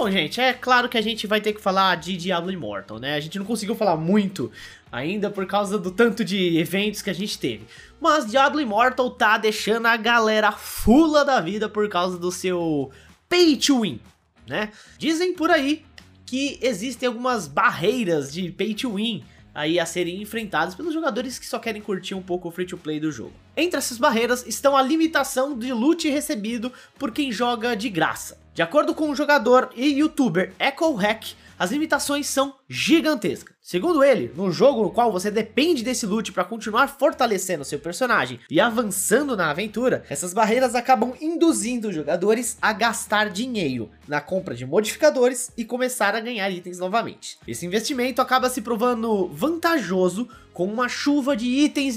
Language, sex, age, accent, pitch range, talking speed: Portuguese, male, 20-39, Brazilian, 195-265 Hz, 180 wpm